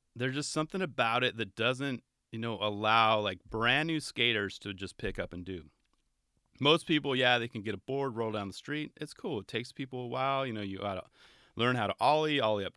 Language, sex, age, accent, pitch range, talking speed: English, male, 30-49, American, 105-150 Hz, 235 wpm